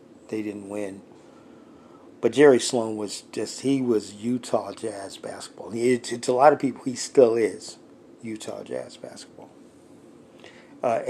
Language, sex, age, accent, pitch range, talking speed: English, male, 50-69, American, 110-125 Hz, 140 wpm